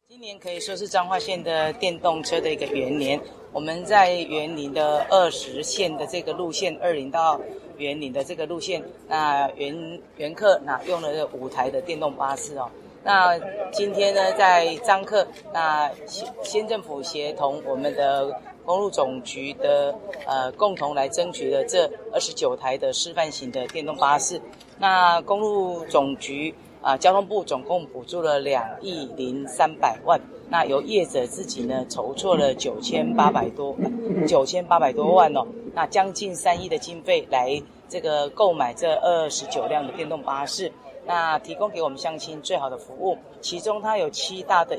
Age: 30-49